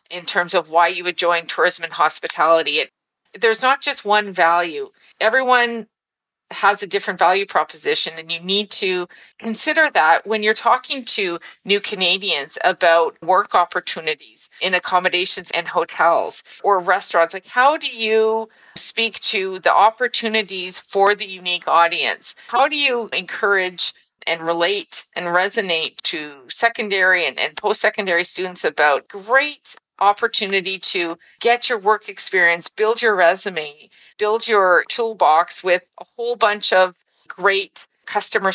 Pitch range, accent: 180-220 Hz, American